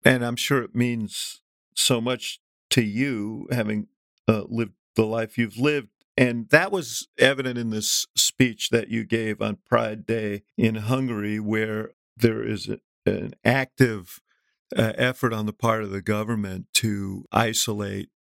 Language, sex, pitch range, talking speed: English, male, 105-120 Hz, 150 wpm